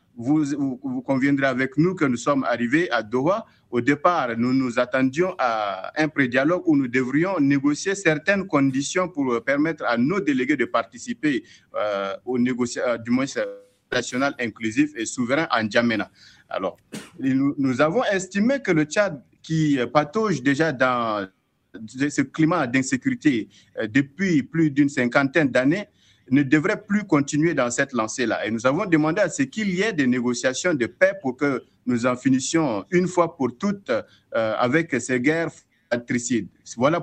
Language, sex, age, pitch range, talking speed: French, male, 50-69, 125-180 Hz, 160 wpm